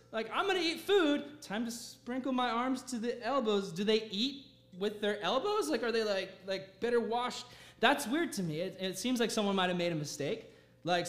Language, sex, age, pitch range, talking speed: English, male, 20-39, 155-220 Hz, 225 wpm